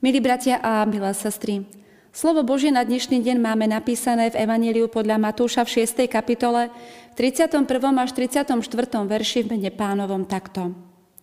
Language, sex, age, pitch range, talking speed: Slovak, female, 30-49, 200-260 Hz, 150 wpm